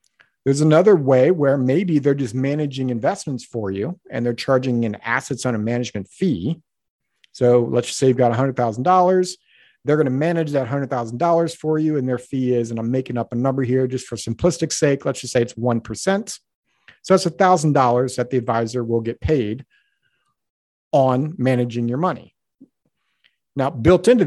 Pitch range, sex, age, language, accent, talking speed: 120-165 Hz, male, 50-69, English, American, 175 wpm